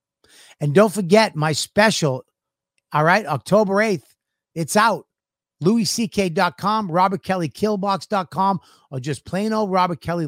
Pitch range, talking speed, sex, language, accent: 140-180 Hz, 125 wpm, male, English, American